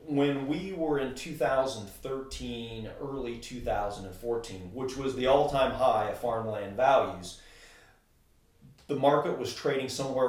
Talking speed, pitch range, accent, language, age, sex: 120 wpm, 105-130 Hz, American, English, 40-59, male